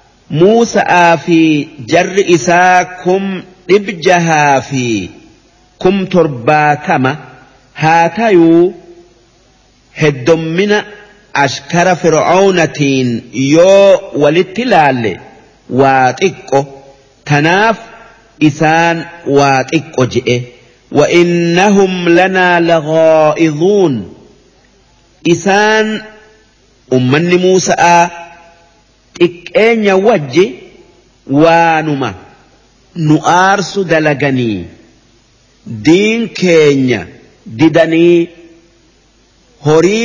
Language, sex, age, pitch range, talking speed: English, male, 50-69, 140-180 Hz, 50 wpm